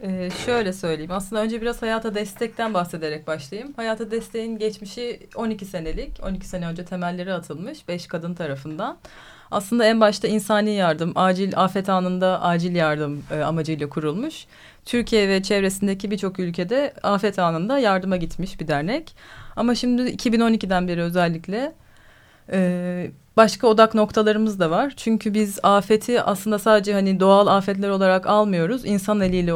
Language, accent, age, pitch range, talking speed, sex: Turkish, native, 30-49, 180-225 Hz, 140 wpm, female